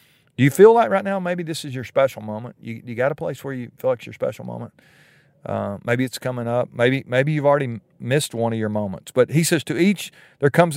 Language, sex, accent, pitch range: English, male, American, 110-145 Hz